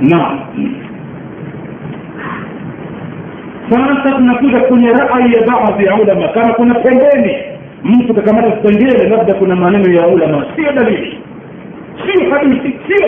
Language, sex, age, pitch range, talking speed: Swahili, male, 50-69, 200-265 Hz, 100 wpm